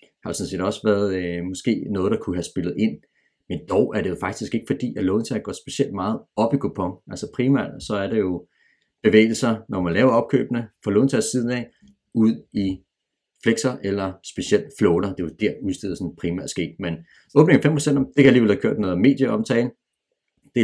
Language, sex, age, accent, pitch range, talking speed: Danish, male, 40-59, native, 90-120 Hz, 200 wpm